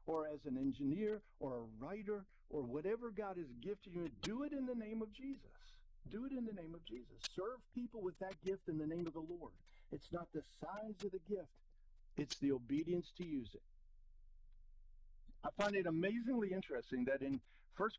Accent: American